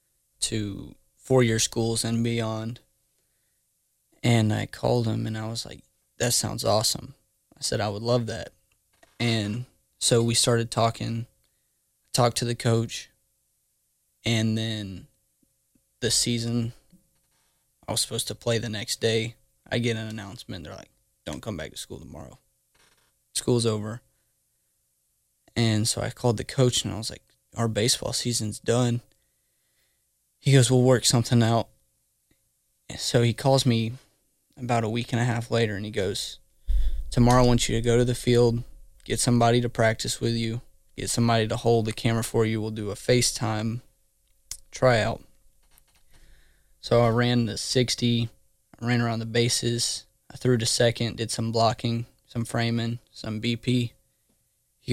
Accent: American